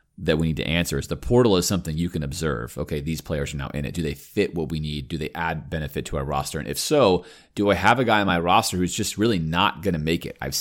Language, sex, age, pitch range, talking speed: English, male, 30-49, 75-95 Hz, 300 wpm